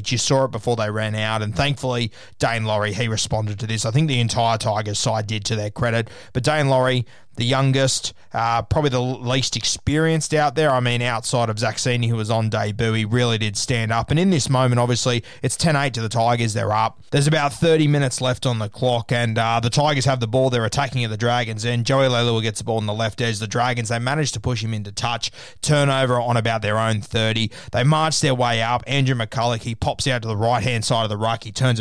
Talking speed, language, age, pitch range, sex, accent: 240 wpm, English, 20-39, 110-135 Hz, male, Australian